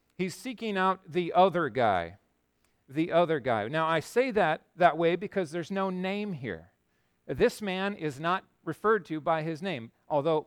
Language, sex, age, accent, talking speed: English, male, 40-59, American, 170 wpm